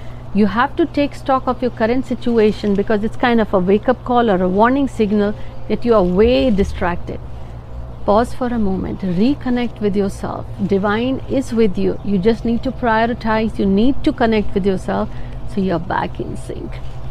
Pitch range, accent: 200-255 Hz, native